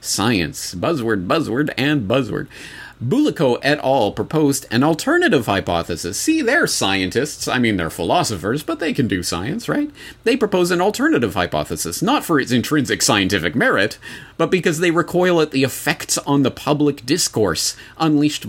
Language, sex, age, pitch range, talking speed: English, male, 40-59, 100-135 Hz, 155 wpm